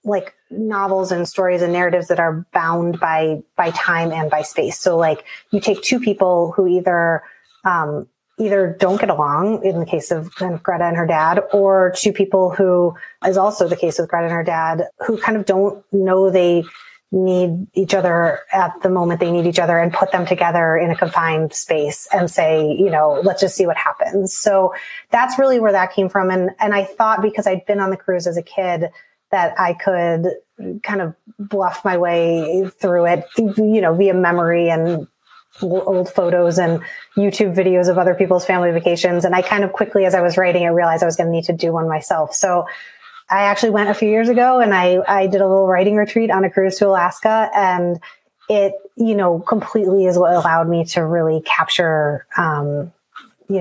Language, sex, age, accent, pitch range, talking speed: English, female, 30-49, American, 170-200 Hz, 205 wpm